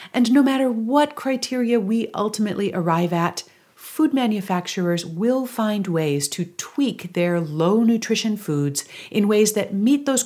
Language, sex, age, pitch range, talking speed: English, female, 40-59, 175-240 Hz, 140 wpm